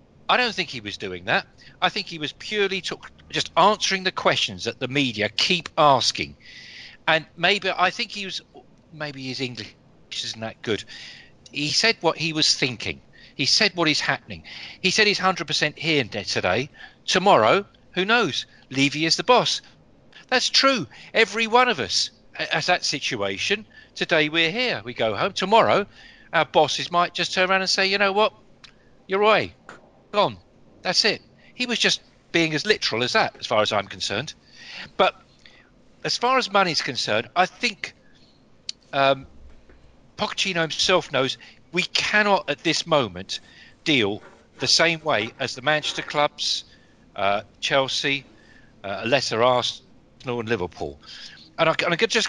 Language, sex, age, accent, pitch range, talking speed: English, male, 40-59, British, 125-190 Hz, 160 wpm